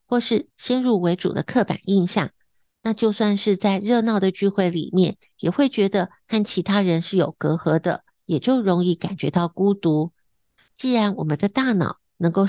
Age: 50-69